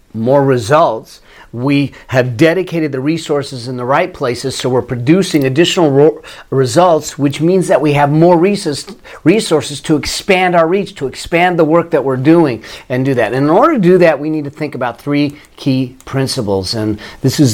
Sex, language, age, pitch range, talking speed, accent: male, English, 40-59, 130-165 Hz, 185 wpm, American